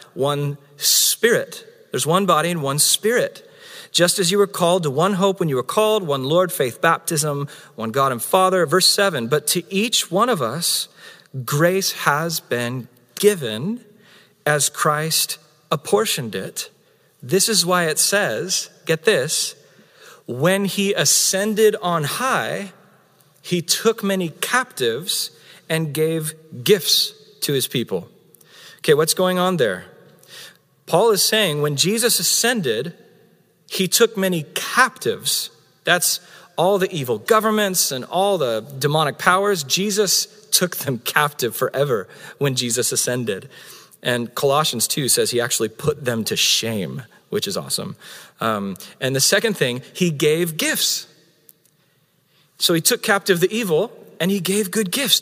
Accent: American